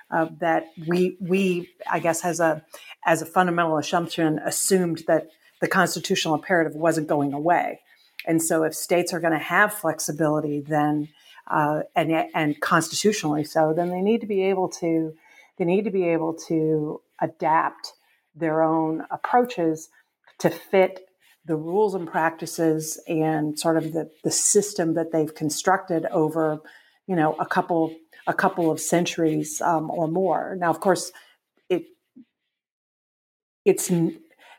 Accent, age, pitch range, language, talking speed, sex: American, 50-69, 155-180 Hz, English, 145 wpm, female